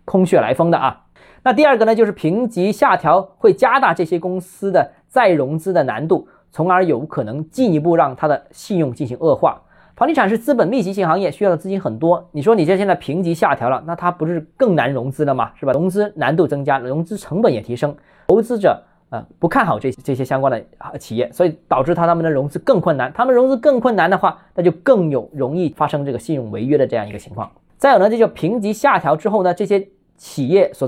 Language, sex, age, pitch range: Chinese, male, 20-39, 135-190 Hz